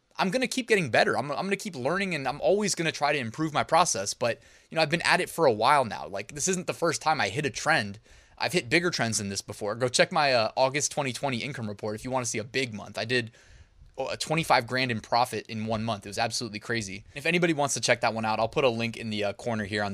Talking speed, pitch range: 300 wpm, 110-155 Hz